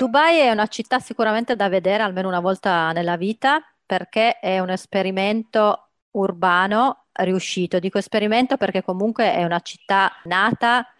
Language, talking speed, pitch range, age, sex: Italian, 140 wpm, 175-220 Hz, 30-49, female